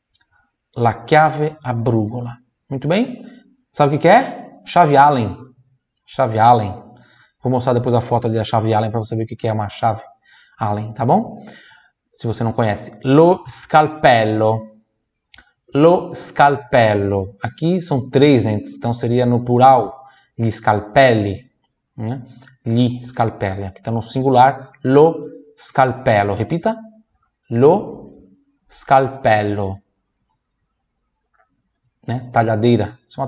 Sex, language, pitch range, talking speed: male, Italian, 110-135 Hz, 120 wpm